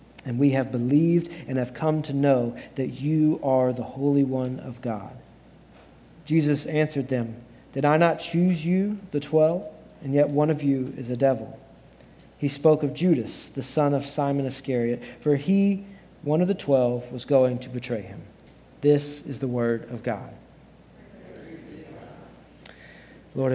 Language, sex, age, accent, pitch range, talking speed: English, male, 40-59, American, 130-165 Hz, 160 wpm